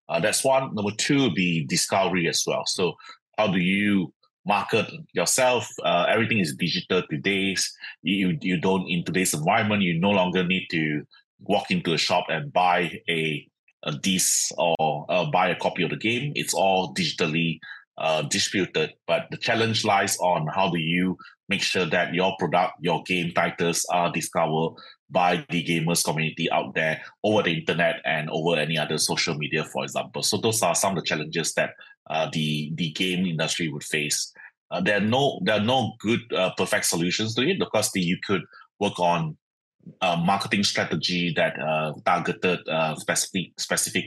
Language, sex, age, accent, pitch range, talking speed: English, male, 30-49, Malaysian, 80-95 Hz, 180 wpm